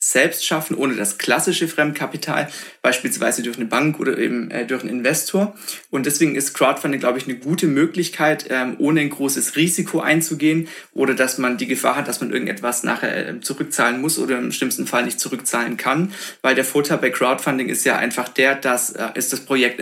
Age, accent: 30-49, German